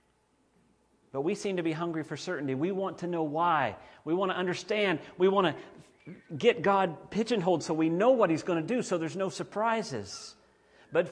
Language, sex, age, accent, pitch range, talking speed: English, male, 40-59, American, 145-190 Hz, 195 wpm